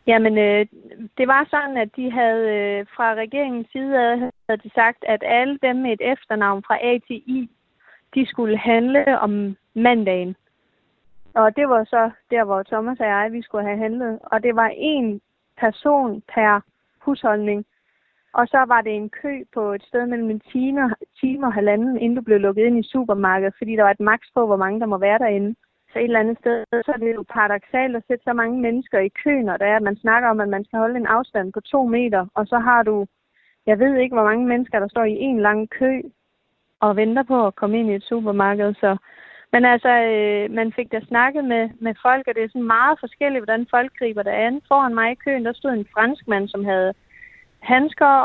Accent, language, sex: native, Danish, female